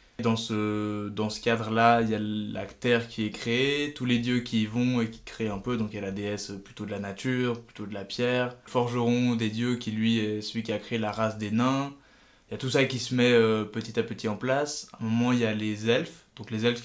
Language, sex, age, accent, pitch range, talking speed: French, male, 20-39, French, 105-120 Hz, 275 wpm